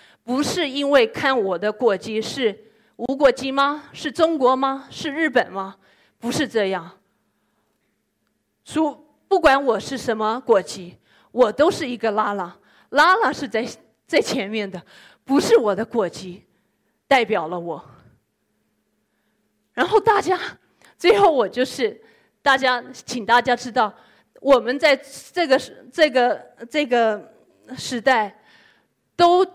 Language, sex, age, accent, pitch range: Chinese, female, 20-39, native, 210-275 Hz